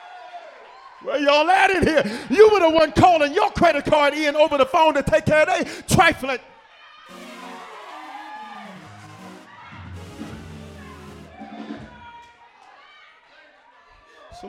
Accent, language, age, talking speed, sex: American, English, 40-59, 100 wpm, male